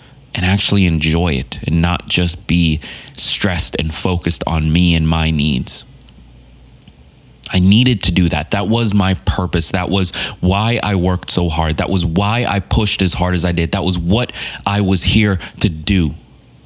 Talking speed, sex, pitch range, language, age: 180 wpm, male, 85-110 Hz, English, 30-49